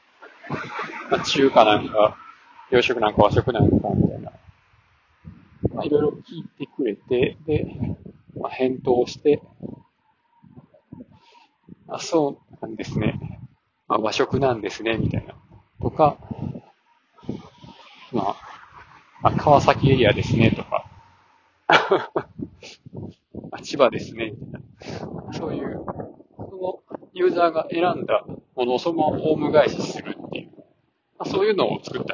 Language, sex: Japanese, male